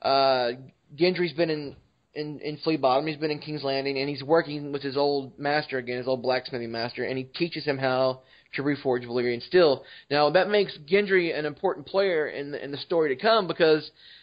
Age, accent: 20-39, American